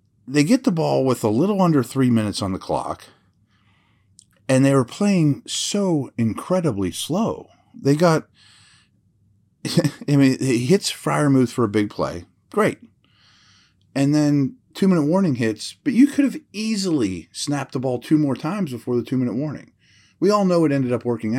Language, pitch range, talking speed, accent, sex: English, 105-165 Hz, 170 wpm, American, male